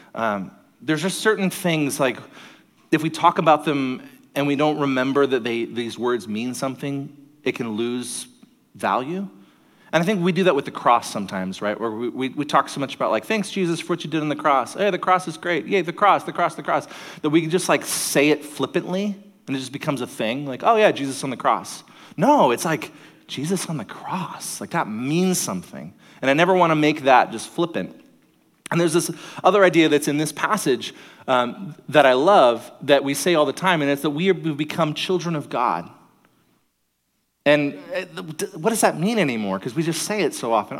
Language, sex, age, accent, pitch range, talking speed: English, male, 30-49, American, 140-185 Hz, 215 wpm